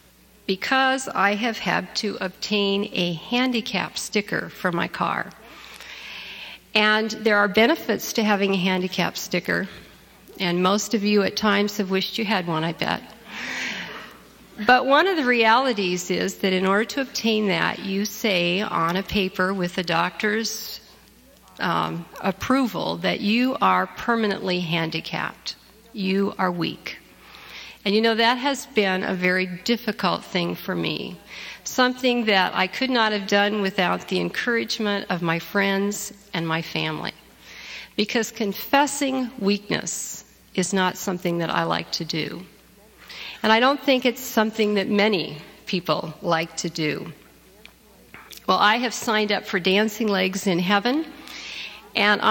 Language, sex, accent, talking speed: English, female, American, 145 wpm